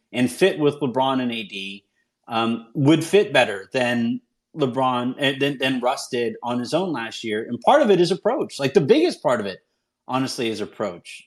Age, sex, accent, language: 30-49, male, American, English